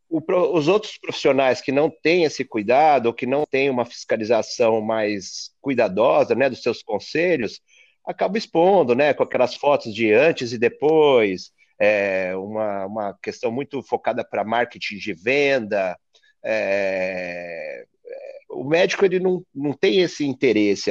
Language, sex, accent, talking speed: Portuguese, male, Brazilian, 140 wpm